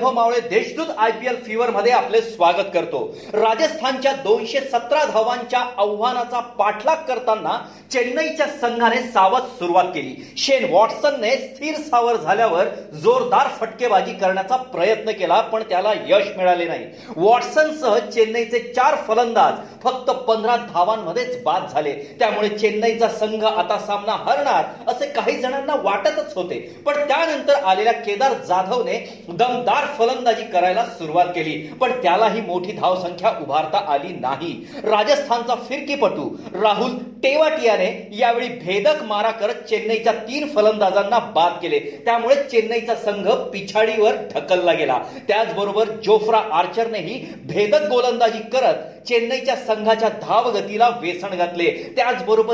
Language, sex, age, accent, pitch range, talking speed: Marathi, male, 40-59, native, 210-255 Hz, 50 wpm